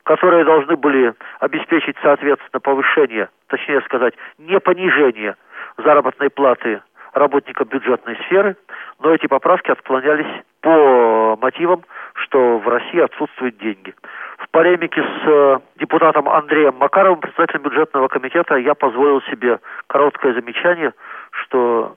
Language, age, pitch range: Russian, 40-59, 120-160 Hz